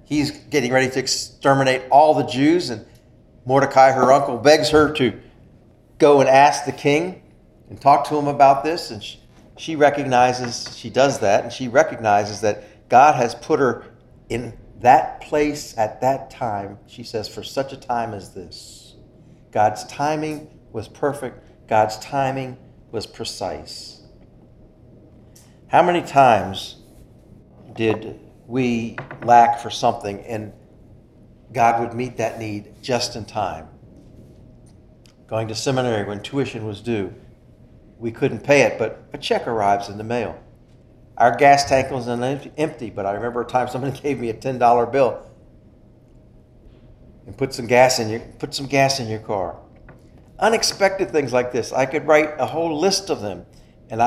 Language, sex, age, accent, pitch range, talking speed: English, male, 50-69, American, 115-140 Hz, 155 wpm